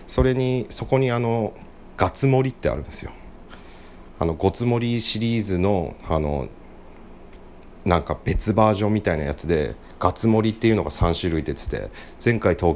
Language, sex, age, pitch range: Japanese, male, 40-59, 75-95 Hz